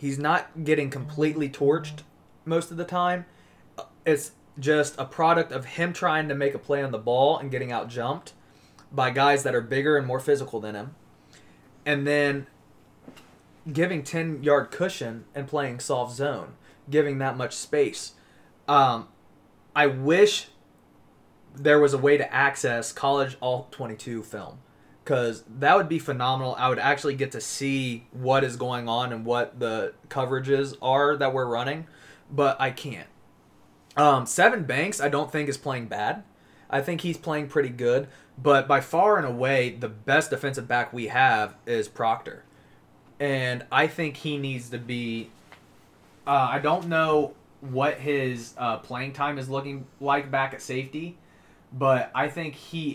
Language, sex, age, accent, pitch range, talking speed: English, male, 20-39, American, 130-150 Hz, 160 wpm